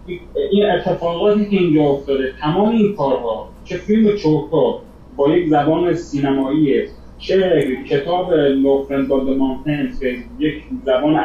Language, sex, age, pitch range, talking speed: Persian, male, 30-49, 145-195 Hz, 100 wpm